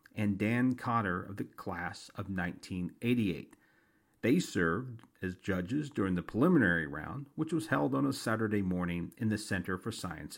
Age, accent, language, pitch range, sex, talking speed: 50-69, American, English, 95-145 Hz, male, 160 wpm